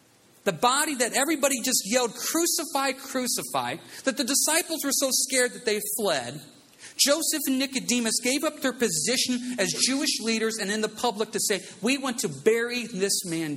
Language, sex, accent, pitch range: English, male, American, 155-245 Hz